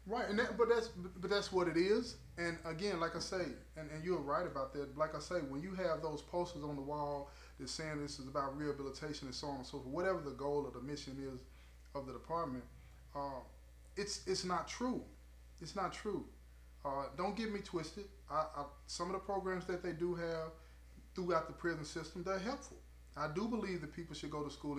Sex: male